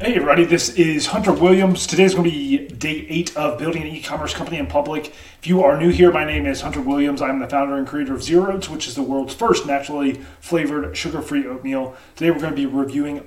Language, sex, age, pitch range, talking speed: English, male, 30-49, 120-155 Hz, 235 wpm